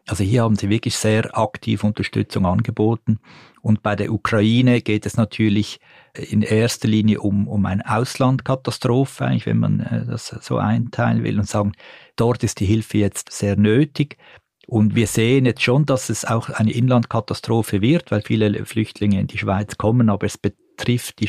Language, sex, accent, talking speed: German, male, Swiss, 170 wpm